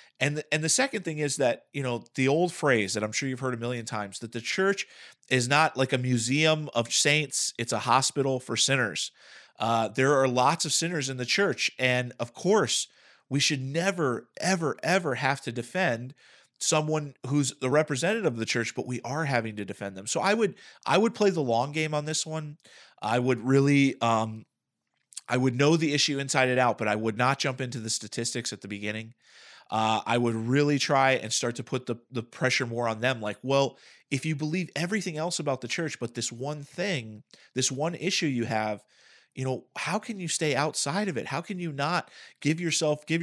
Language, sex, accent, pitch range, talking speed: English, male, American, 120-155 Hz, 215 wpm